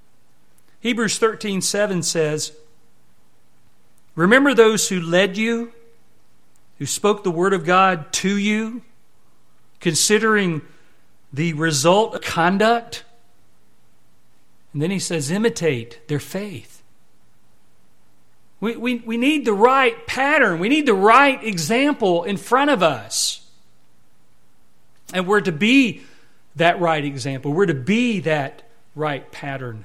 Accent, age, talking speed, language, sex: American, 50-69, 115 wpm, English, male